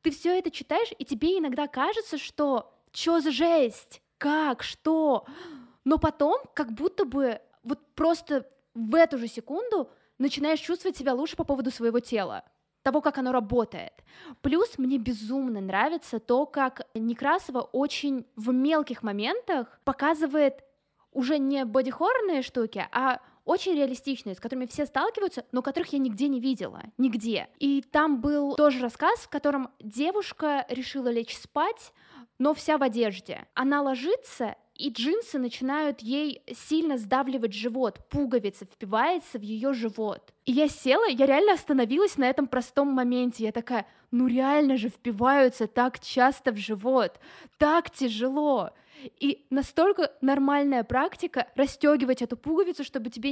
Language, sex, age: Russian, female, 20-39